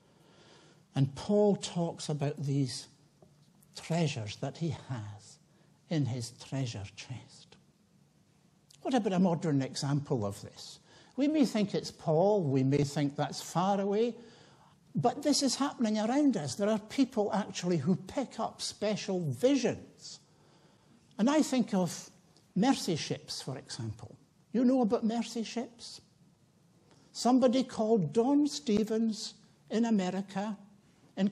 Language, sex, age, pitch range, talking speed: English, male, 60-79, 155-225 Hz, 125 wpm